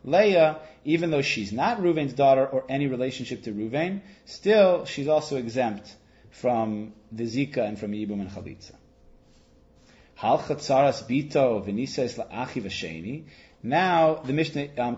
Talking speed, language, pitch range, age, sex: 120 wpm, English, 125-160 Hz, 30-49, male